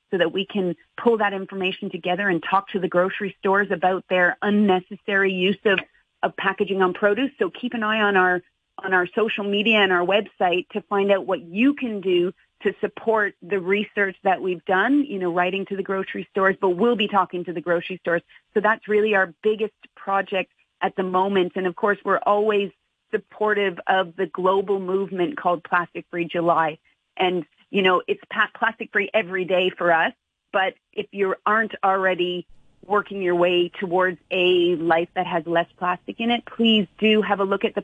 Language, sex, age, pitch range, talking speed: English, female, 40-59, 180-210 Hz, 190 wpm